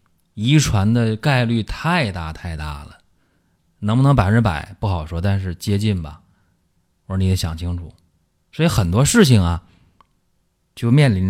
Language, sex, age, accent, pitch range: Chinese, male, 20-39, native, 90-120 Hz